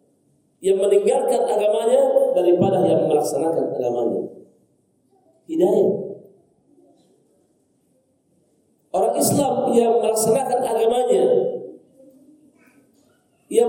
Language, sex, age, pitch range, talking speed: Indonesian, male, 40-59, 210-280 Hz, 60 wpm